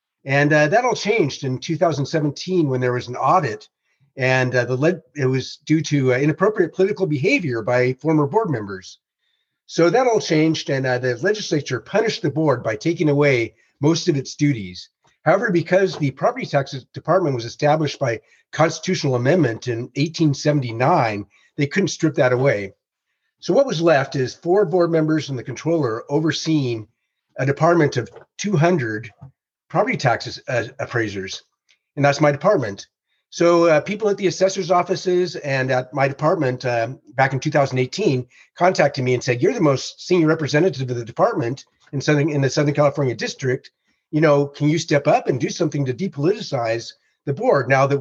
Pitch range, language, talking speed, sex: 125-165 Hz, English, 170 wpm, male